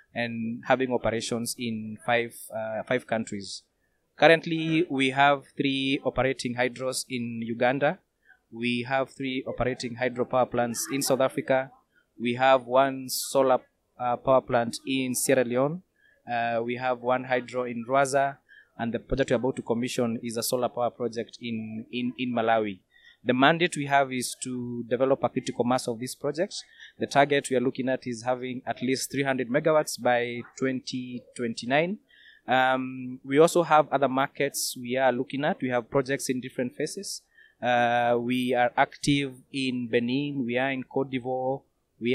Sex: male